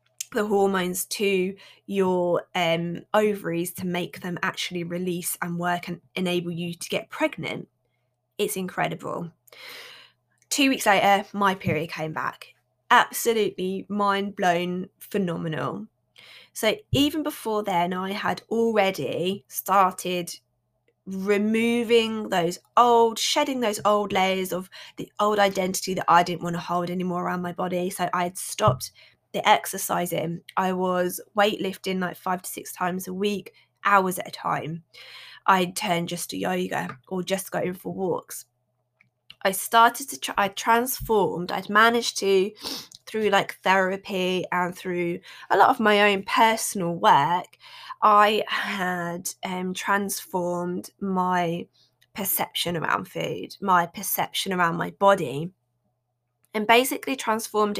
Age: 20-39